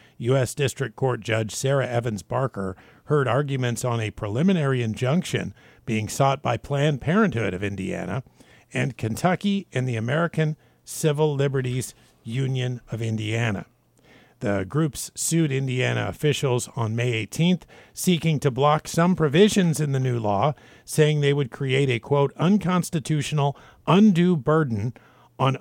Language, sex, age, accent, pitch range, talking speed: English, male, 50-69, American, 115-155 Hz, 135 wpm